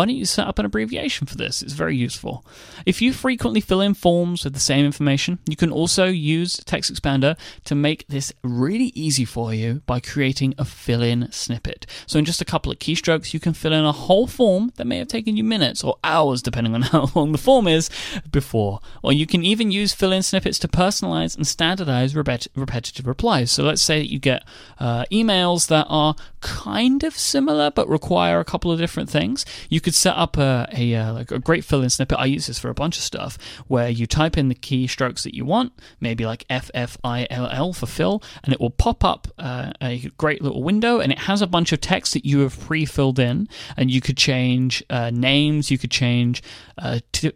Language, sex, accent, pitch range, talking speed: English, male, British, 125-175 Hz, 215 wpm